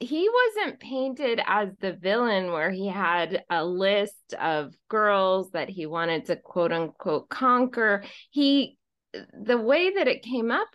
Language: English